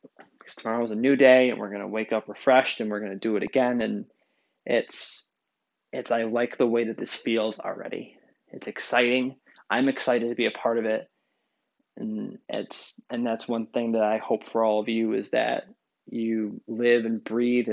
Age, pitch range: 20-39, 110-125 Hz